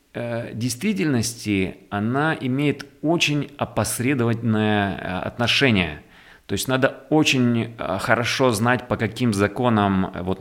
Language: Russian